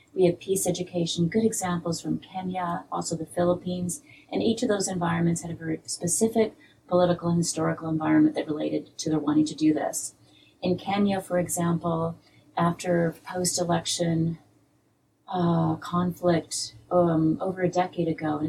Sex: female